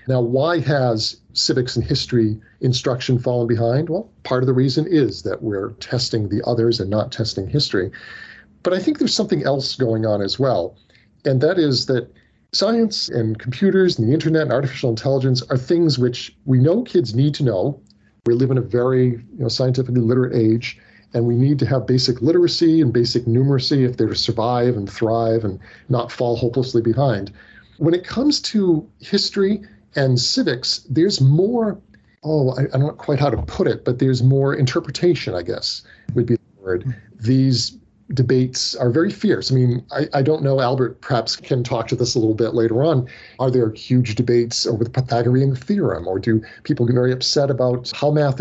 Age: 40-59